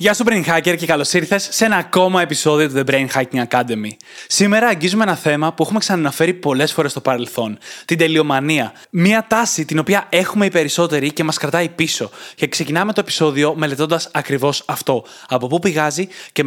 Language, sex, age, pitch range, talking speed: Greek, male, 20-39, 140-180 Hz, 185 wpm